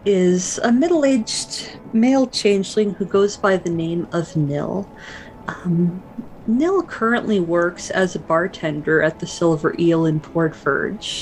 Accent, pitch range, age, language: American, 160-205 Hz, 40-59, English